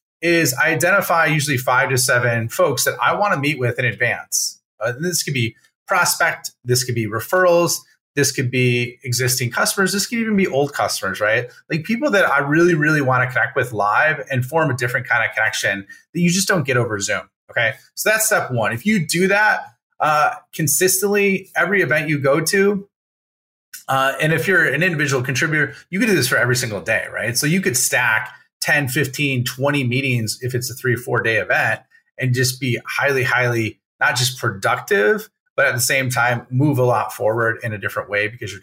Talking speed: 205 wpm